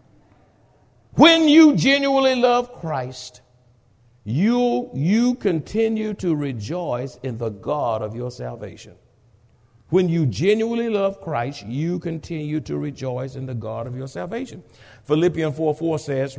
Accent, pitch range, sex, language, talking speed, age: American, 115-180 Hz, male, English, 125 wpm, 60-79